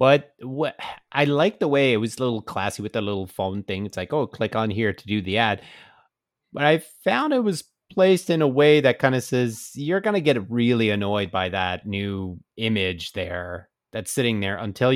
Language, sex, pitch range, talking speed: English, male, 95-120 Hz, 215 wpm